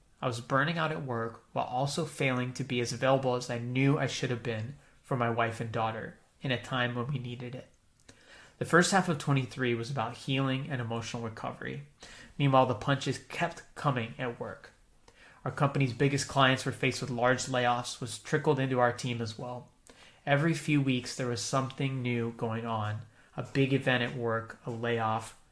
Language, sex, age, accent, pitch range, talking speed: English, male, 30-49, American, 120-140 Hz, 195 wpm